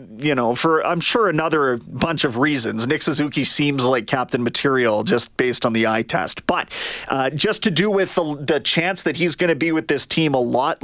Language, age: English, 30-49